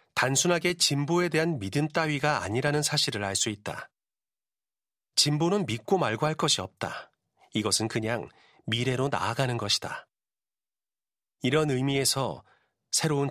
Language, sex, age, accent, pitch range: Korean, male, 40-59, native, 125-160 Hz